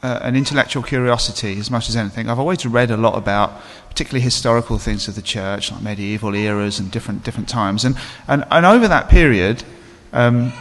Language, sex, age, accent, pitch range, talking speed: English, male, 30-49, British, 110-135 Hz, 190 wpm